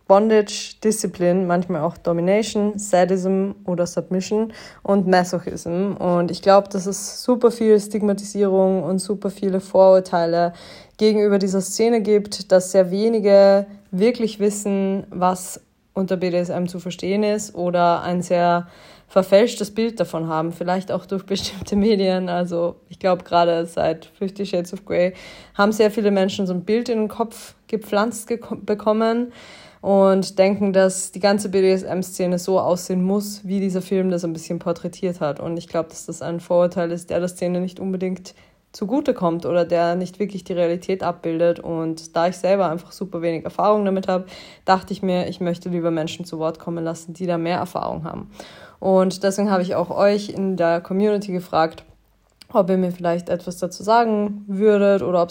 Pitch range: 175-200 Hz